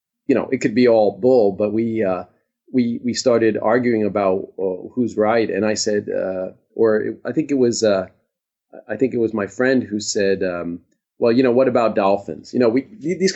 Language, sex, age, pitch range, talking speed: English, male, 40-59, 105-165 Hz, 215 wpm